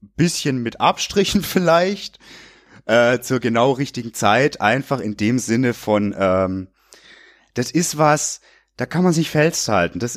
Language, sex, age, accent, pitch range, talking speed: German, male, 30-49, German, 95-135 Hz, 140 wpm